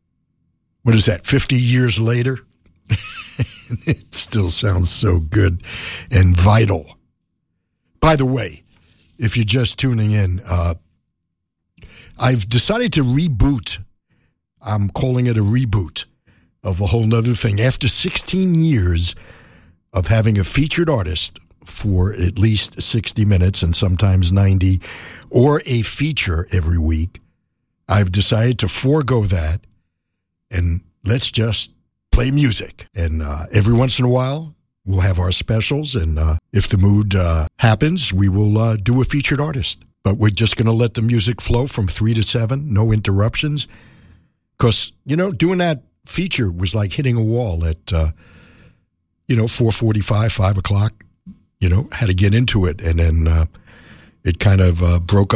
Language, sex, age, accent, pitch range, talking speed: English, male, 60-79, American, 90-120 Hz, 150 wpm